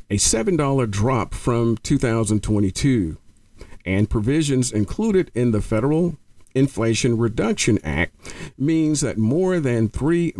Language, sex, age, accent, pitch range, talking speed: English, male, 50-69, American, 105-135 Hz, 110 wpm